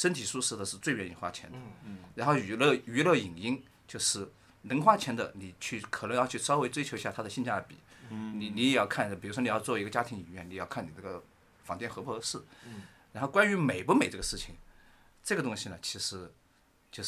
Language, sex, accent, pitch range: Chinese, male, native, 105-175 Hz